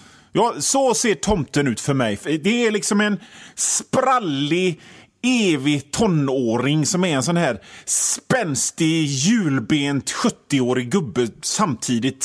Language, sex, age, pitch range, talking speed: Swedish, male, 30-49, 125-185 Hz, 120 wpm